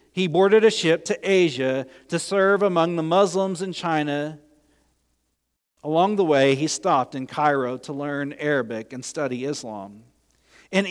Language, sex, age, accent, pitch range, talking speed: English, male, 40-59, American, 140-195 Hz, 150 wpm